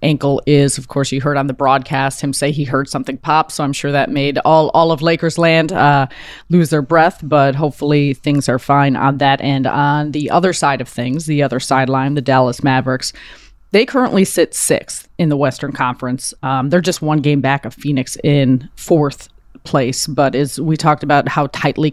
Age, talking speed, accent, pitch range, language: 30-49, 205 wpm, American, 135-155 Hz, English